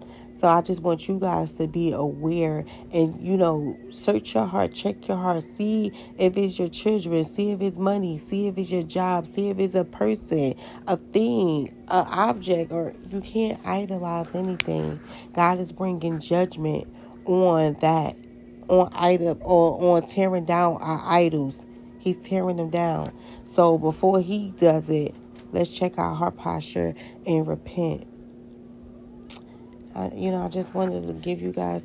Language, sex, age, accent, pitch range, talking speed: English, female, 30-49, American, 120-185 Hz, 165 wpm